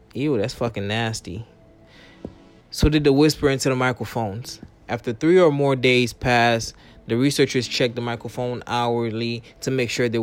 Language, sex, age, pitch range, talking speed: English, male, 20-39, 115-130 Hz, 160 wpm